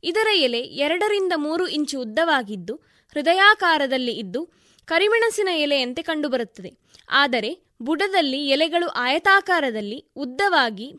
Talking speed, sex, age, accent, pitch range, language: 85 wpm, female, 20-39, native, 260-350 Hz, Kannada